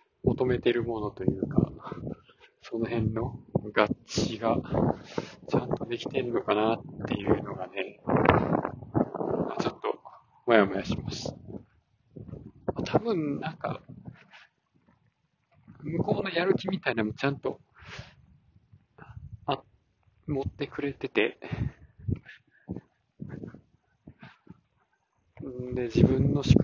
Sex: male